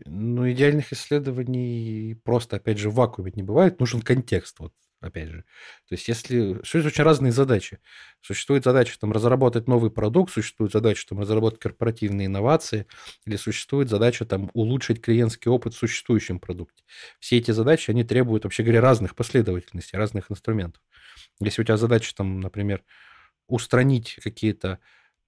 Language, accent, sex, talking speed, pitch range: Russian, native, male, 150 wpm, 105-125 Hz